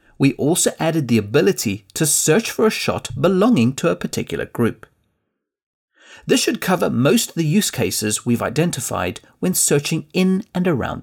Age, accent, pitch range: 30-49, British, 110-165 Hz